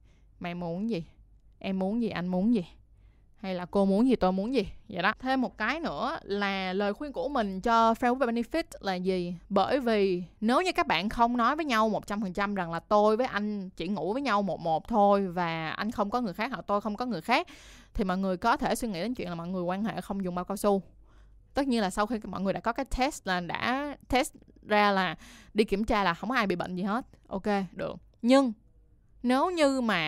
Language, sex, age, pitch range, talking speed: Vietnamese, female, 20-39, 185-240 Hz, 245 wpm